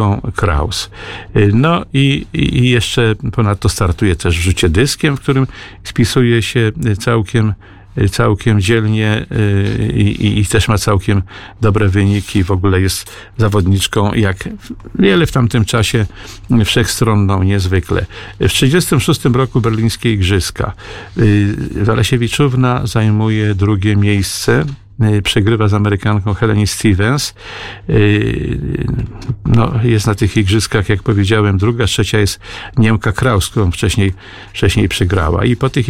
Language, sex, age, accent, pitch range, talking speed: Polish, male, 50-69, native, 100-115 Hz, 115 wpm